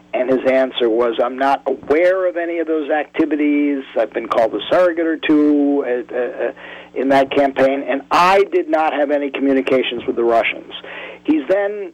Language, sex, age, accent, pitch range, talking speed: English, male, 50-69, American, 135-200 Hz, 170 wpm